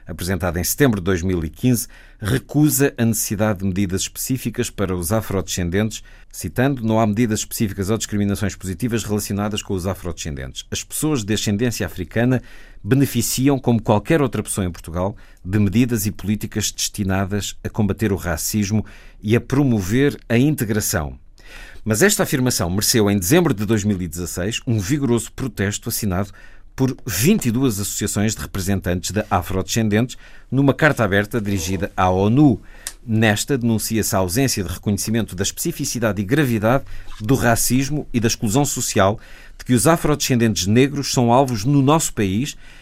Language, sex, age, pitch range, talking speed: Portuguese, male, 50-69, 100-130 Hz, 145 wpm